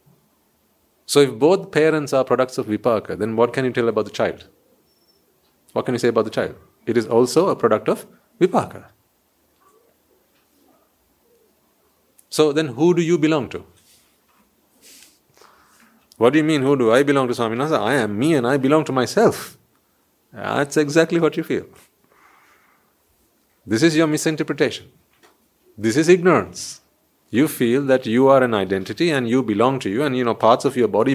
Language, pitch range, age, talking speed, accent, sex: English, 110-150 Hz, 40-59, 165 wpm, Indian, male